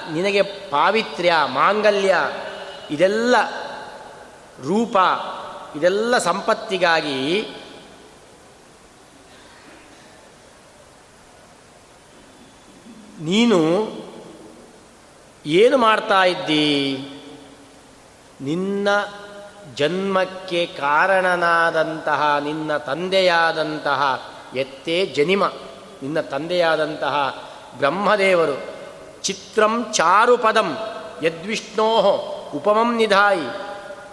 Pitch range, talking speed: 155-210 Hz, 45 wpm